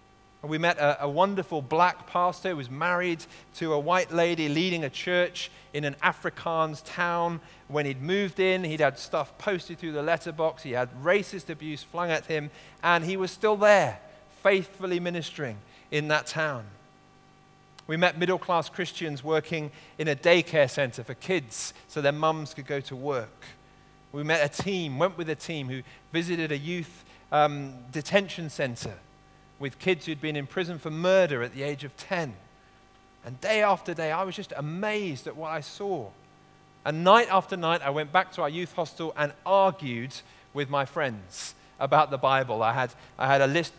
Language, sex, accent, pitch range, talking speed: English, male, British, 135-175 Hz, 180 wpm